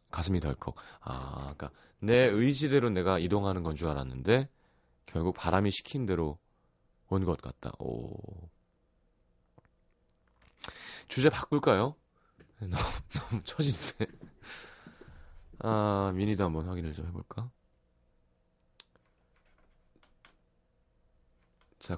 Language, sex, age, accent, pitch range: Korean, male, 30-49, native, 70-115 Hz